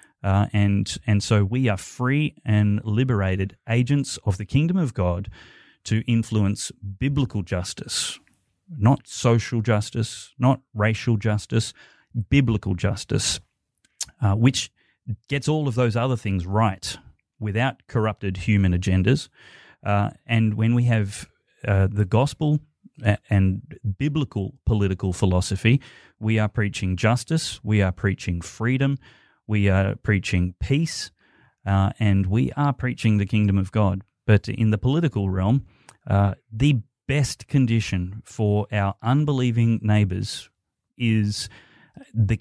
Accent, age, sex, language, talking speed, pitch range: Australian, 30-49, male, English, 125 wpm, 100-125 Hz